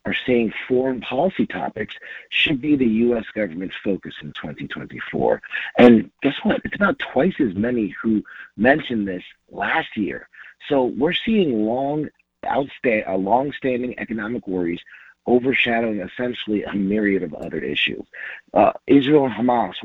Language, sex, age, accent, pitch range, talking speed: English, male, 50-69, American, 100-120 Hz, 125 wpm